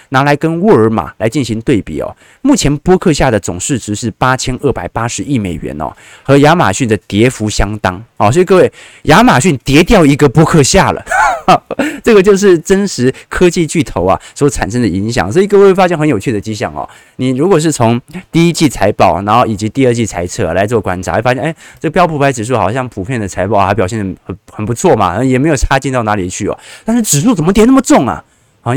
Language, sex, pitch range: Chinese, male, 105-160 Hz